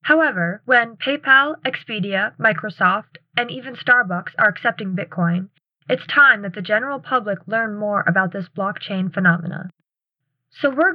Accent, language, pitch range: American, English, 180-245 Hz